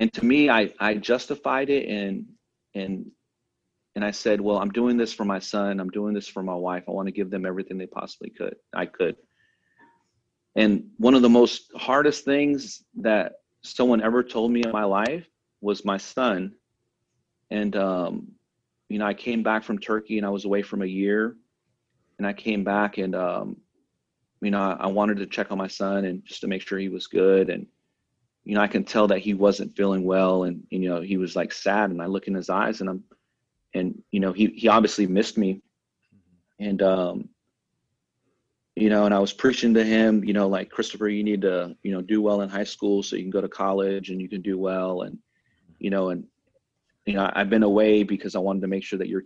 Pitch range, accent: 95-110 Hz, American